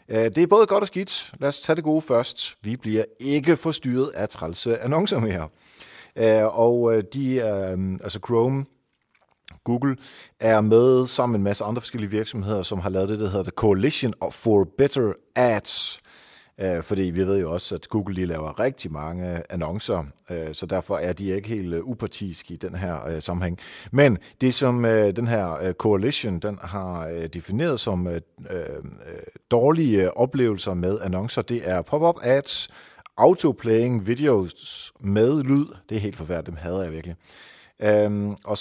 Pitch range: 90-120 Hz